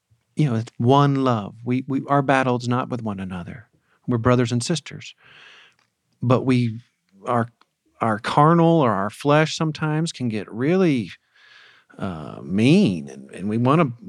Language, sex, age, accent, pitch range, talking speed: English, male, 40-59, American, 120-155 Hz, 155 wpm